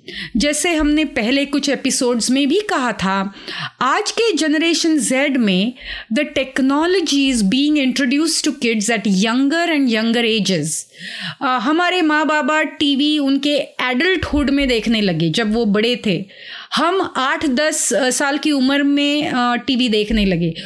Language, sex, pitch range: Hindi, female, 230-310 Hz